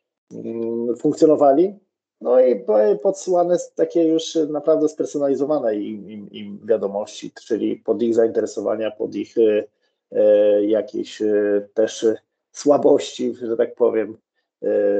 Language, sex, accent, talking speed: Polish, male, native, 105 wpm